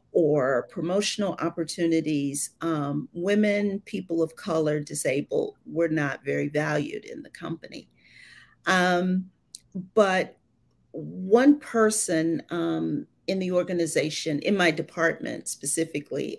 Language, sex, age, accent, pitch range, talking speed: English, female, 40-59, American, 150-210 Hz, 105 wpm